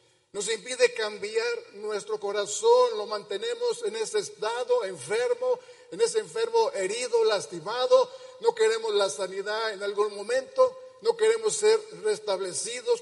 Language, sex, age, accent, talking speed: Spanish, male, 50-69, Mexican, 125 wpm